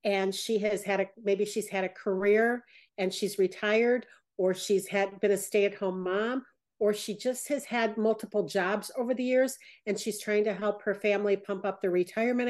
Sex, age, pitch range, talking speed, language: female, 50-69, 200-235 Hz, 205 wpm, English